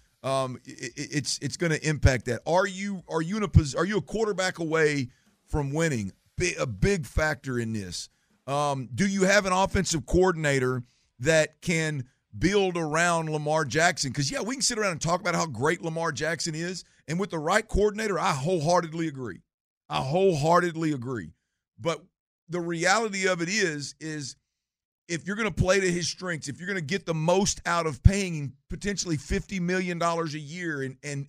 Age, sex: 50-69, male